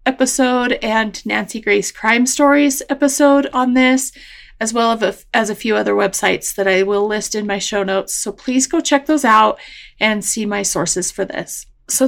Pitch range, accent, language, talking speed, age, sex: 205-260 Hz, American, English, 185 wpm, 30-49, female